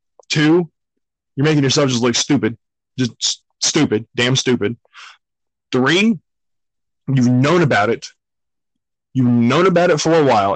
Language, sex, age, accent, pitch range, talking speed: English, male, 20-39, American, 115-145 Hz, 135 wpm